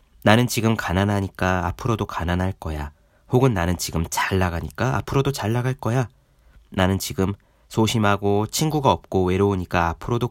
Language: Korean